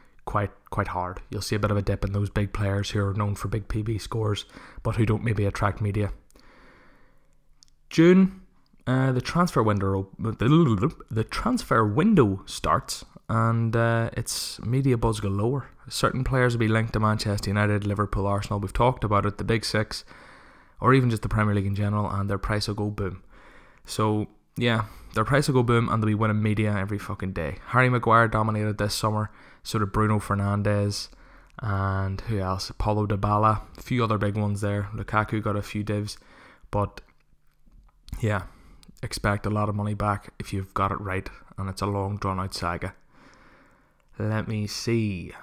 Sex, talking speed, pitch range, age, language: male, 180 wpm, 100-115 Hz, 20-39, English